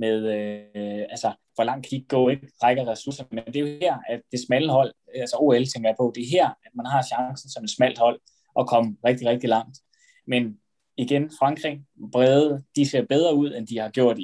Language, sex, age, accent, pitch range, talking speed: Danish, male, 20-39, native, 110-135 Hz, 215 wpm